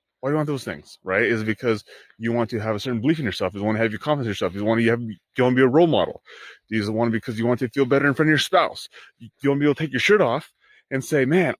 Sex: male